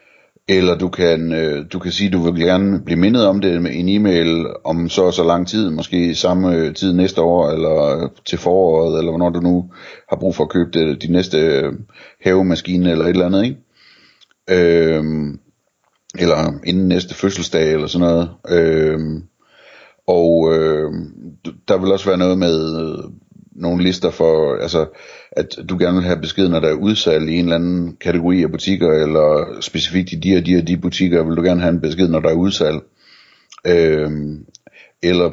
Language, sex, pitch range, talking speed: Danish, male, 80-90 Hz, 185 wpm